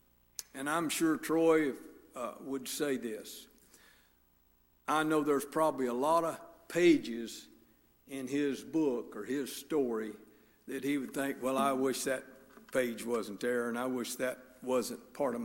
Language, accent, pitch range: English, American, 125-170 Hz